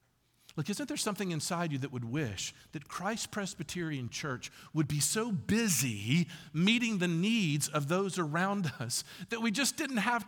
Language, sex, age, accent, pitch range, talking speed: English, male, 50-69, American, 130-185 Hz, 170 wpm